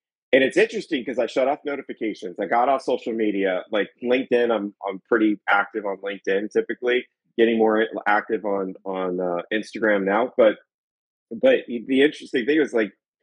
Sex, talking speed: male, 170 wpm